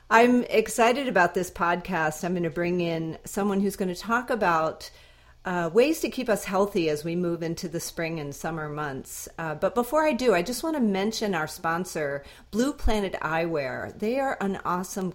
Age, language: 40-59, English